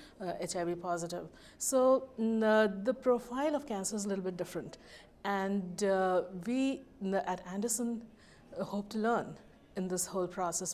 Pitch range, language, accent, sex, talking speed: 185-215 Hz, English, Indian, female, 155 wpm